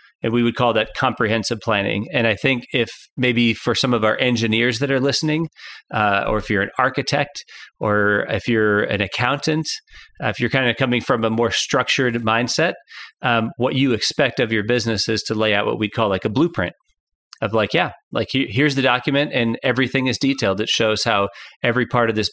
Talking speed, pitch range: 205 wpm, 110-130 Hz